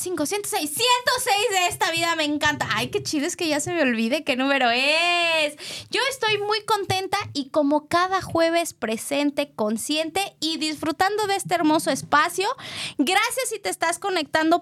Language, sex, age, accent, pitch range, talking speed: Spanish, female, 20-39, Mexican, 255-345 Hz, 165 wpm